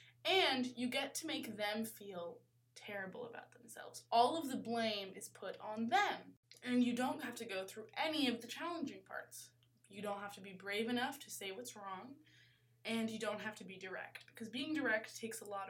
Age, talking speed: 20-39, 205 wpm